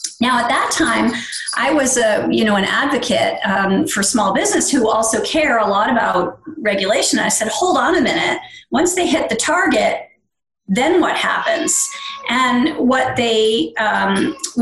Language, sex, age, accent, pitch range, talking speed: Danish, female, 40-59, American, 240-330 Hz, 165 wpm